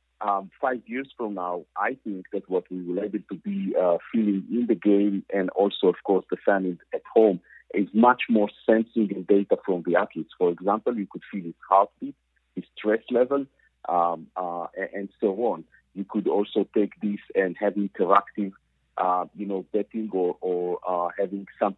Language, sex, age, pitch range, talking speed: English, male, 50-69, 95-115 Hz, 185 wpm